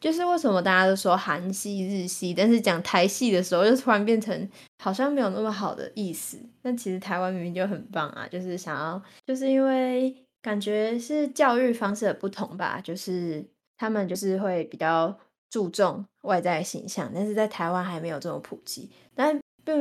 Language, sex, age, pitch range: Chinese, female, 20-39, 185-230 Hz